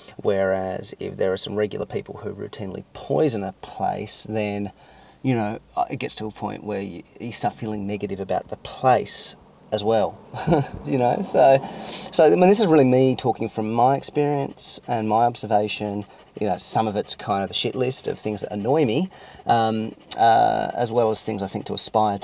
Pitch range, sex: 100-130 Hz, male